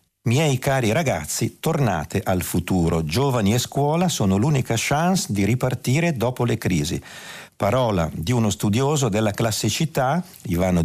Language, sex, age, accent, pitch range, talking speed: Italian, male, 50-69, native, 90-130 Hz, 135 wpm